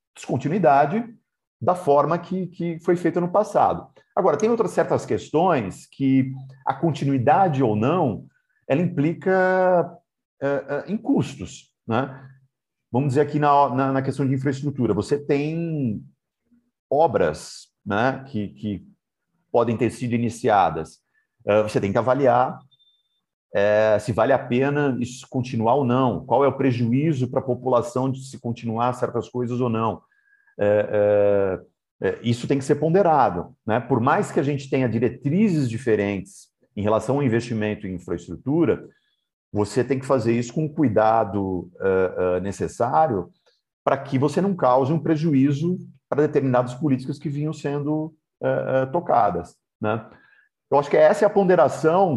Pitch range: 115-155 Hz